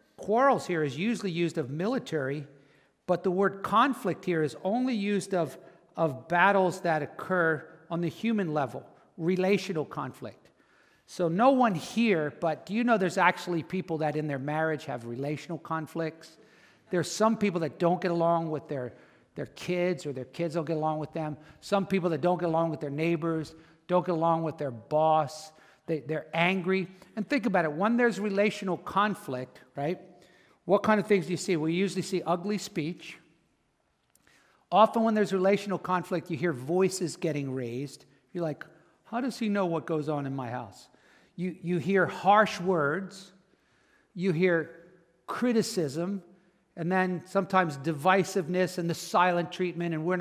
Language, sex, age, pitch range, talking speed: English, male, 50-69, 160-185 Hz, 170 wpm